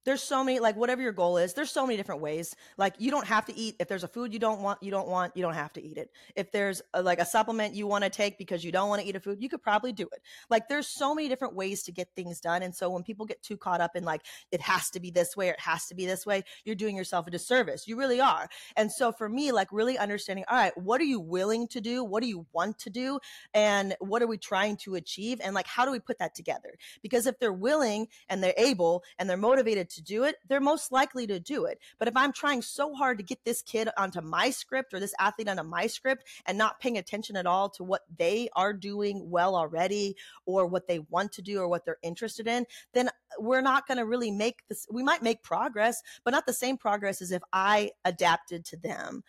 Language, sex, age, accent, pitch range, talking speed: English, female, 20-39, American, 185-245 Hz, 265 wpm